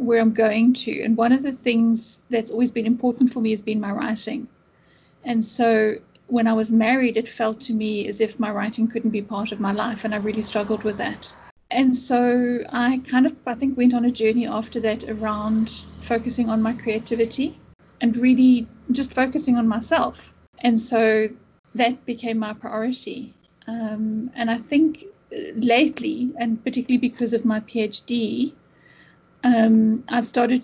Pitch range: 220-245 Hz